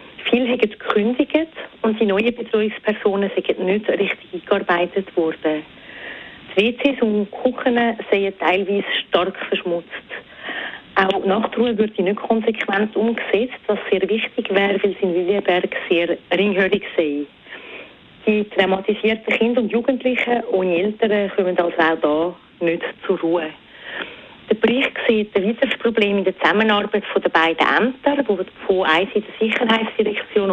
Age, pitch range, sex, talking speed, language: 40-59, 185-220 Hz, female, 135 wpm, German